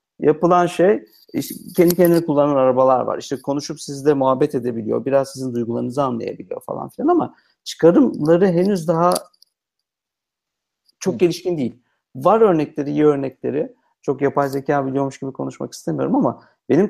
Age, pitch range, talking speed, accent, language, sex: 50-69, 125-165 Hz, 135 wpm, native, Turkish, male